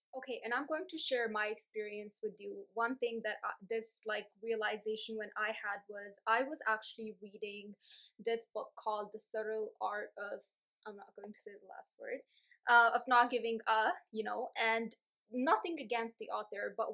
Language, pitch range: English, 215-265 Hz